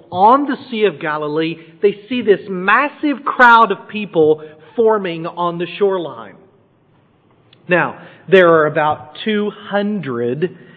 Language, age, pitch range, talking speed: English, 40-59, 145-185 Hz, 115 wpm